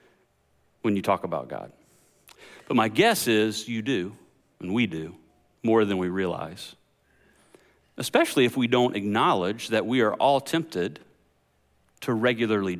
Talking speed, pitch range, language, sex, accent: 140 wpm, 110-160 Hz, English, male, American